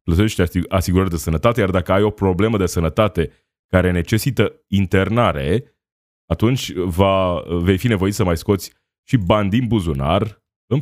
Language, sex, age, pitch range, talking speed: Romanian, male, 20-39, 85-105 Hz, 150 wpm